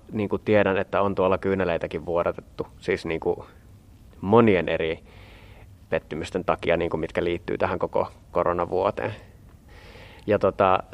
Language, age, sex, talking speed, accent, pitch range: Finnish, 20-39, male, 95 wpm, native, 95-105 Hz